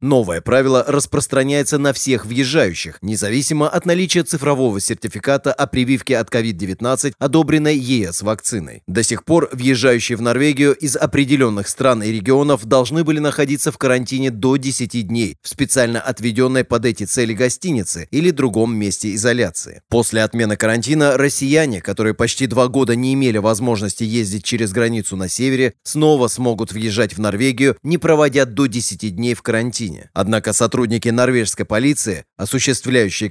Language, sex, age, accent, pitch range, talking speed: Russian, male, 30-49, native, 110-140 Hz, 145 wpm